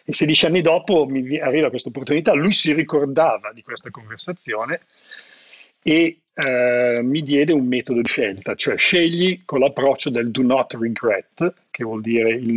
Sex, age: male, 40-59